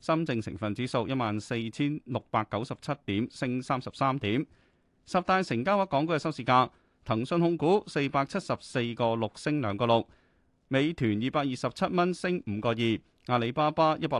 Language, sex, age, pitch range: Chinese, male, 30-49, 110-155 Hz